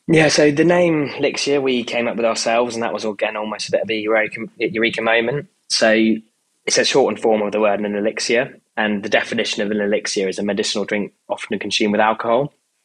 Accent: British